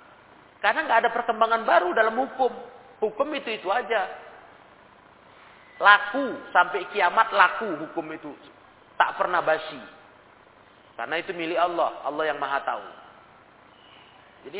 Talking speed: 120 wpm